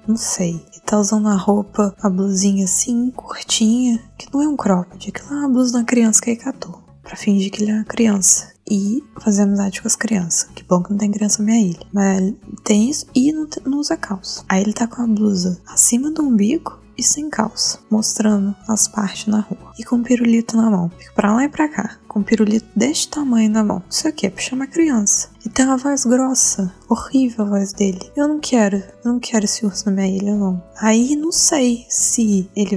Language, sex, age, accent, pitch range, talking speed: Portuguese, female, 20-39, Brazilian, 195-240 Hz, 225 wpm